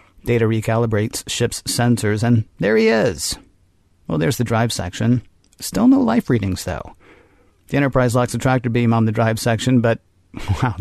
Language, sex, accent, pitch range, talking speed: English, male, American, 110-130 Hz, 165 wpm